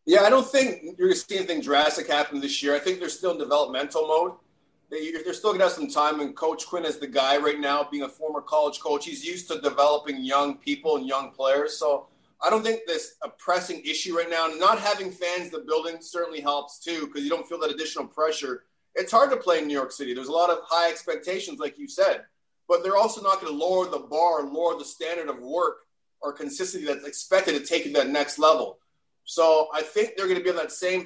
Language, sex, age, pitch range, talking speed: English, male, 30-49, 155-195 Hz, 245 wpm